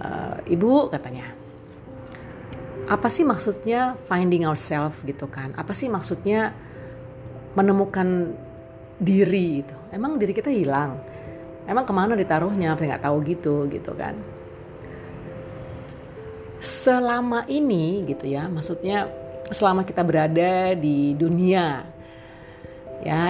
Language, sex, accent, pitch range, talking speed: Indonesian, female, native, 145-205 Hz, 100 wpm